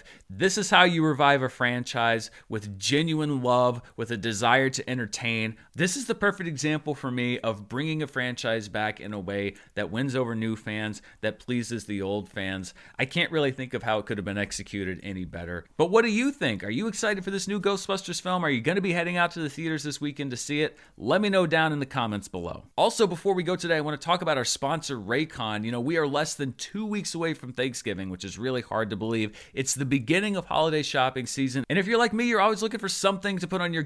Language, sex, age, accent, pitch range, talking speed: English, male, 30-49, American, 115-170 Hz, 250 wpm